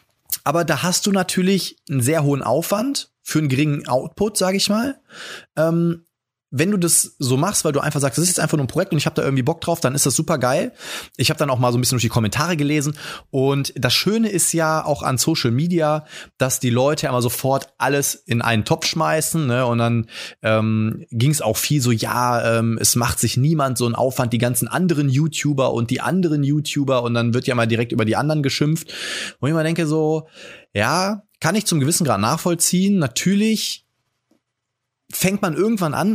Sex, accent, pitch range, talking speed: male, German, 125-165 Hz, 215 wpm